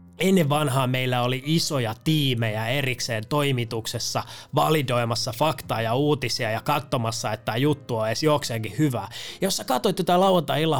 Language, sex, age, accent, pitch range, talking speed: Finnish, male, 20-39, native, 120-155 Hz, 145 wpm